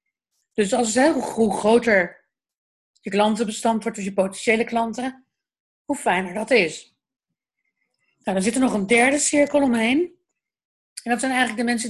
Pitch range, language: 200-265 Hz, Dutch